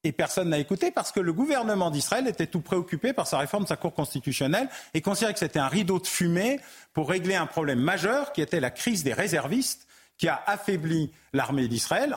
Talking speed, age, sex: 210 wpm, 40-59, male